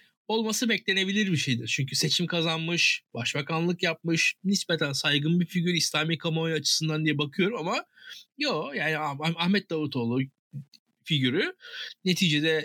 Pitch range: 150-230 Hz